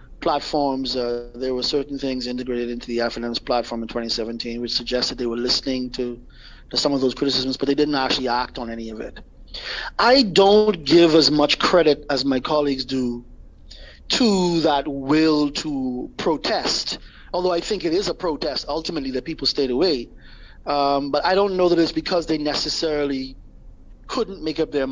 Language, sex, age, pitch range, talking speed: English, male, 30-49, 135-190 Hz, 180 wpm